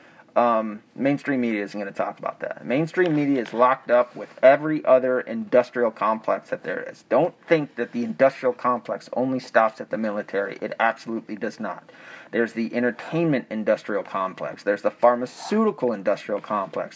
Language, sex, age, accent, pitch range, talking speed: English, male, 30-49, American, 115-155 Hz, 165 wpm